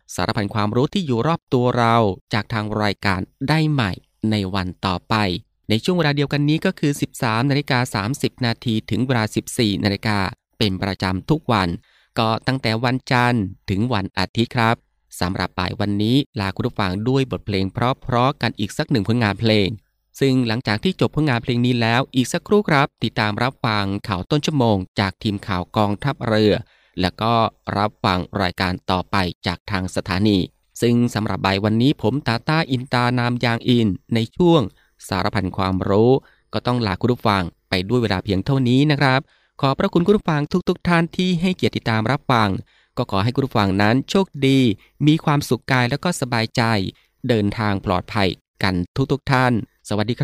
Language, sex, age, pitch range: Thai, male, 20-39, 100-130 Hz